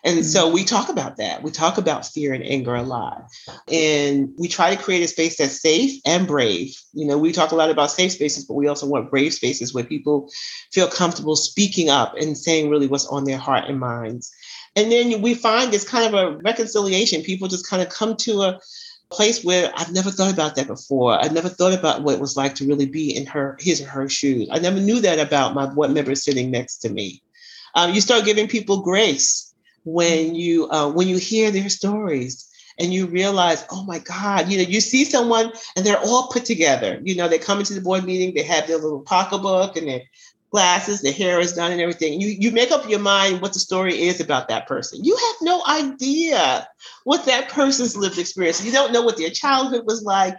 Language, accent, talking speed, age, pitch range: English, American, 225 wpm, 40-59, 150-210 Hz